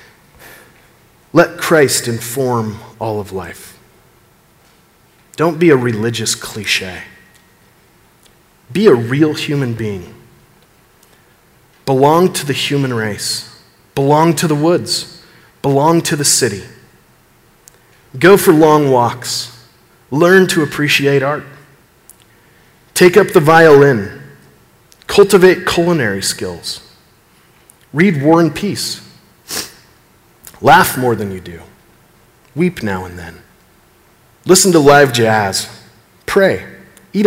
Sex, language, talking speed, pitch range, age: male, English, 100 wpm, 120-175 Hz, 40-59